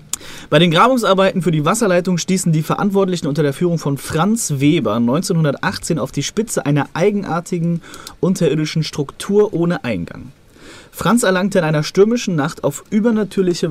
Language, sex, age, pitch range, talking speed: German, male, 30-49, 145-195 Hz, 145 wpm